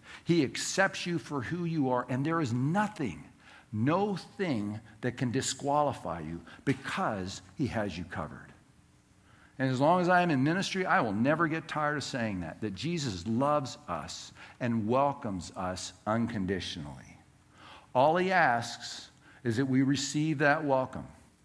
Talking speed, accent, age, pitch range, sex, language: 155 wpm, American, 60-79, 115-155 Hz, male, English